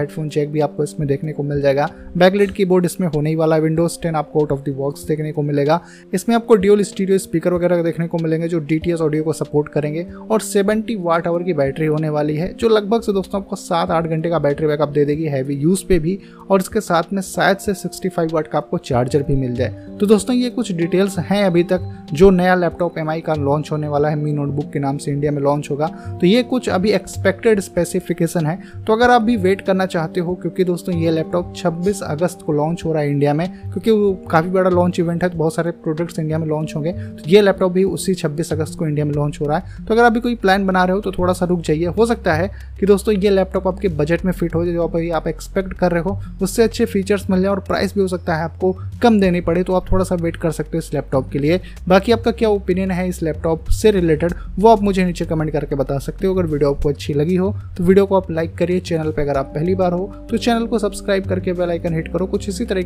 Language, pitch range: Hindi, 155-195 Hz